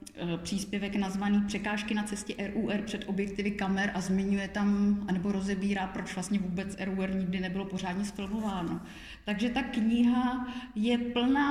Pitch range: 190-215 Hz